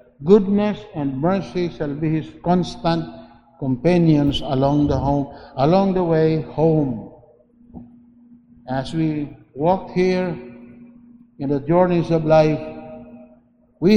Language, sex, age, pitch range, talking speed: English, male, 60-79, 140-195 Hz, 105 wpm